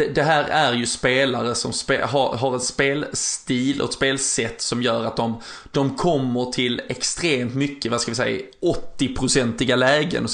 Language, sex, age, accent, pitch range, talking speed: Swedish, male, 20-39, native, 120-135 Hz, 165 wpm